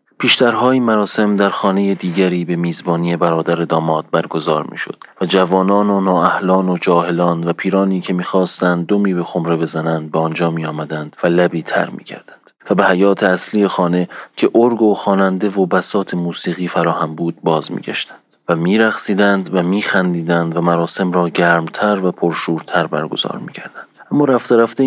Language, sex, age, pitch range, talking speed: Persian, male, 30-49, 85-105 Hz, 165 wpm